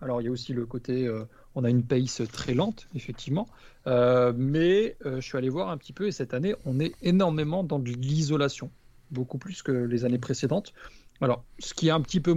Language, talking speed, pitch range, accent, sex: French, 230 wpm, 125-150 Hz, French, male